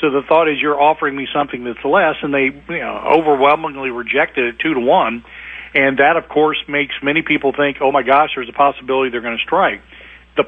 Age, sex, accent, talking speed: 50-69, male, American, 210 wpm